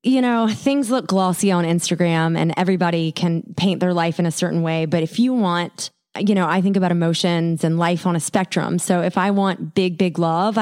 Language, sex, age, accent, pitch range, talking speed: English, female, 30-49, American, 170-210 Hz, 220 wpm